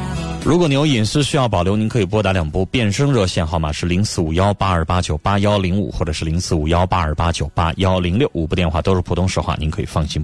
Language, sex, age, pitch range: Chinese, male, 30-49, 85-115 Hz